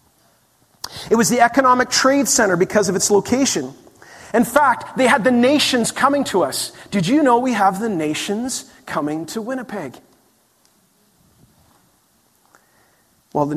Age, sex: 40-59, male